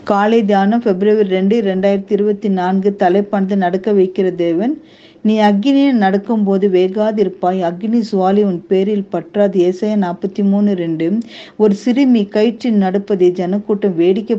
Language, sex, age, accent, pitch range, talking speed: Tamil, female, 50-69, native, 185-225 Hz, 115 wpm